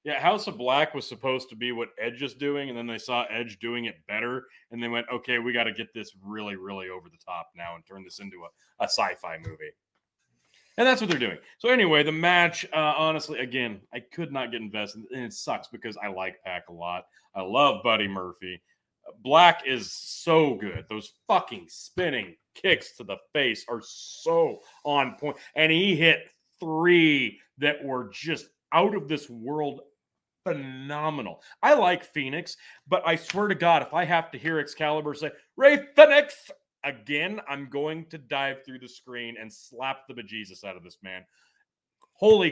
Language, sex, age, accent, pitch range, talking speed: English, male, 30-49, American, 120-195 Hz, 190 wpm